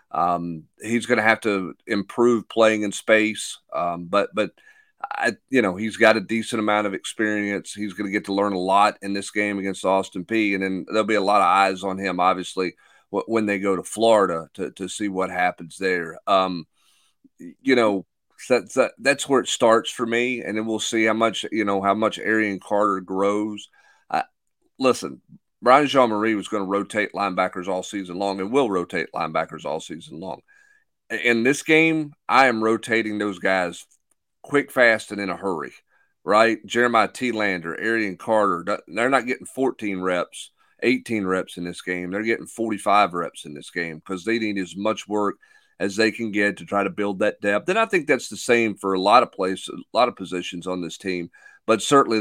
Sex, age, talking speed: male, 40-59, 200 wpm